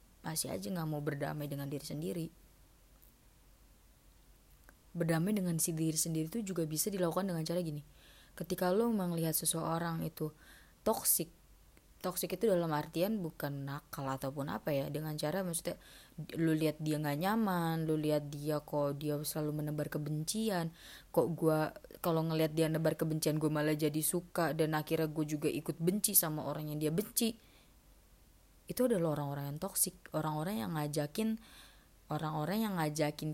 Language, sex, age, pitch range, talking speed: Indonesian, female, 20-39, 150-175 Hz, 150 wpm